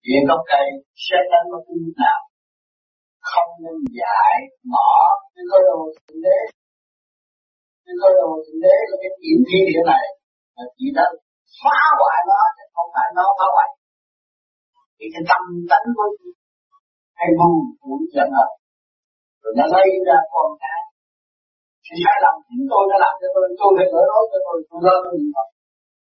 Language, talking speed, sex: Vietnamese, 105 wpm, male